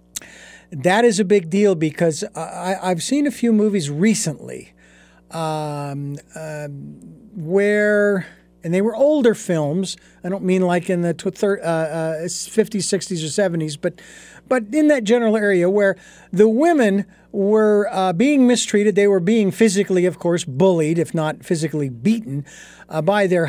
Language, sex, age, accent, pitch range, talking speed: English, male, 50-69, American, 155-200 Hz, 160 wpm